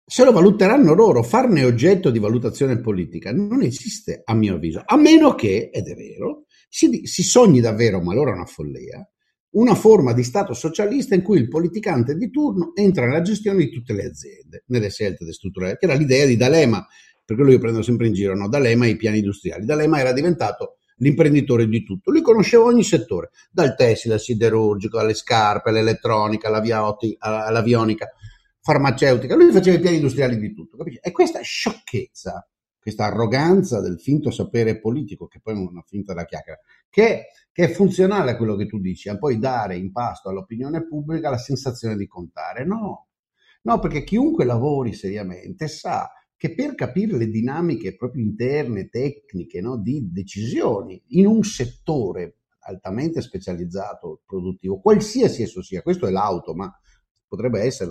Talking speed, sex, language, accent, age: 170 wpm, male, Italian, native, 50-69